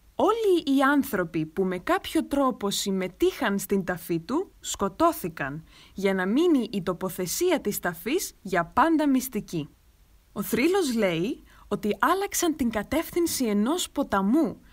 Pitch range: 195-295 Hz